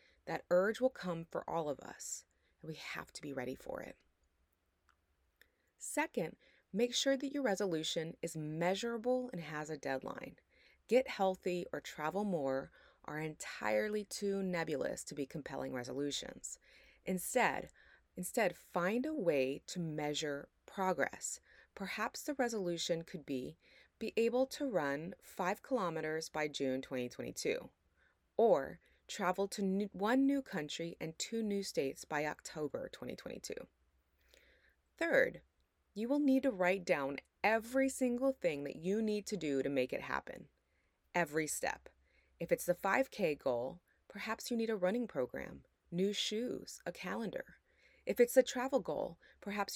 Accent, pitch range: American, 150-220 Hz